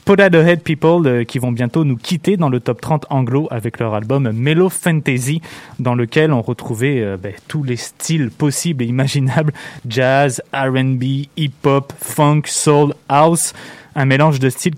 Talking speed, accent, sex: 165 wpm, French, male